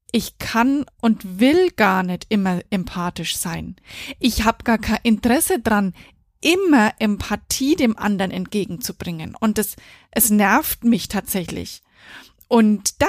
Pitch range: 210-265 Hz